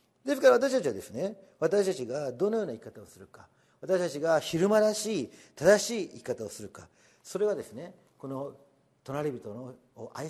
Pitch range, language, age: 120-175 Hz, Japanese, 40-59